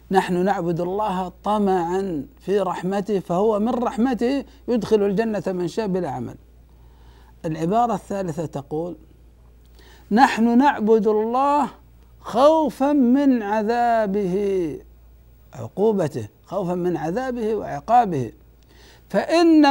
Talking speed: 90 wpm